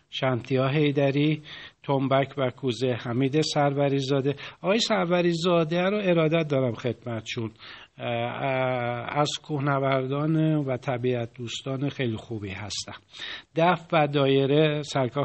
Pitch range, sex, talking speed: 130-155 Hz, male, 105 wpm